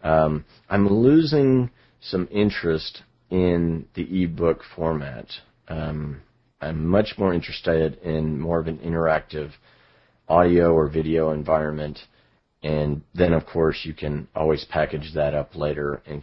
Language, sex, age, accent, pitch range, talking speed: English, male, 40-59, American, 75-85 Hz, 130 wpm